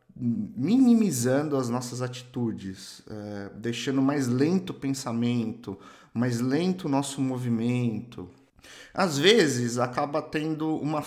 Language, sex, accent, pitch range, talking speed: Portuguese, male, Brazilian, 120-160 Hz, 110 wpm